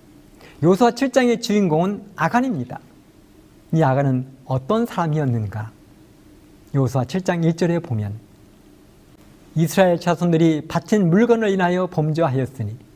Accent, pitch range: native, 135-205 Hz